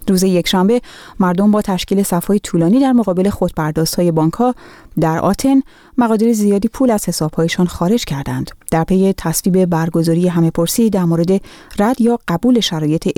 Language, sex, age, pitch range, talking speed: Persian, female, 30-49, 170-215 Hz, 155 wpm